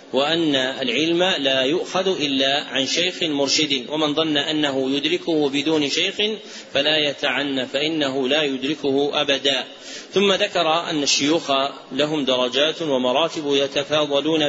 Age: 40-59